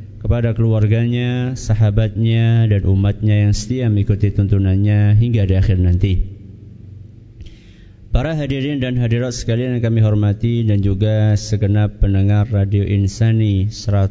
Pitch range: 100-115 Hz